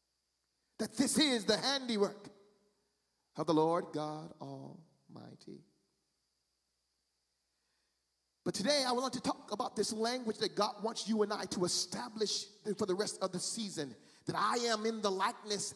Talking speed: 150 wpm